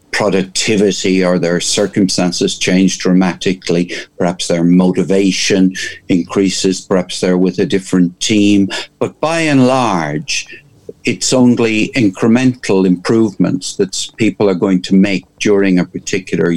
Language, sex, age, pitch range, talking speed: English, male, 60-79, 95-155 Hz, 120 wpm